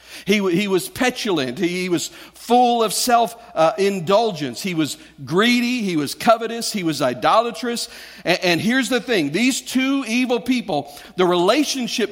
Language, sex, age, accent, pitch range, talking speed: English, male, 50-69, American, 160-230 Hz, 155 wpm